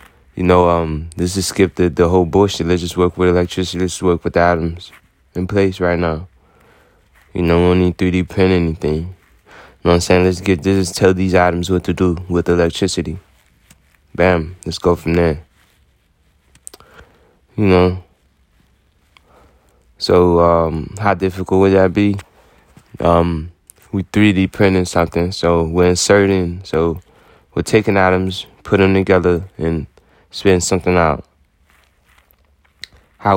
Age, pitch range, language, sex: 20-39, 80-95 Hz, English, male